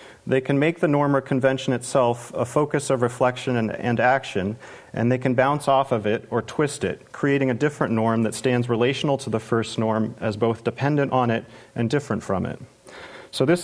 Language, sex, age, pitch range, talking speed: English, male, 40-59, 120-150 Hz, 205 wpm